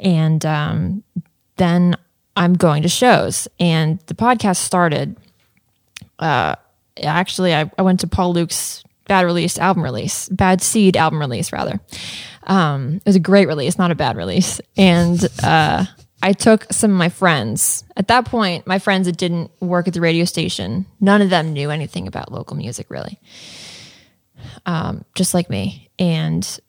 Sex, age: female, 20-39